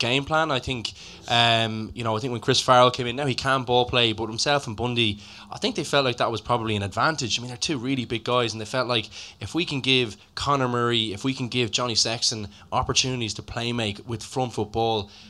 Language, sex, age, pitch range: English, male, 10-29, 110-130 Hz